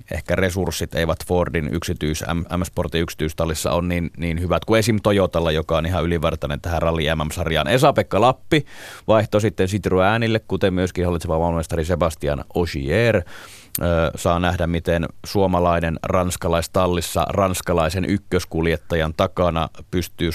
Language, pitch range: Finnish, 80-95 Hz